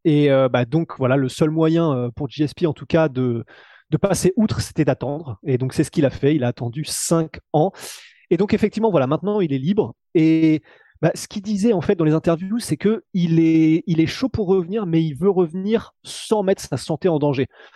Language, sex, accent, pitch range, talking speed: French, male, French, 135-170 Hz, 230 wpm